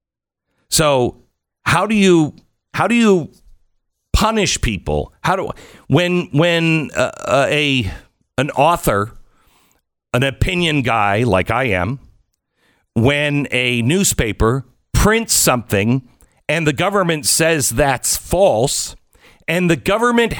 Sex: male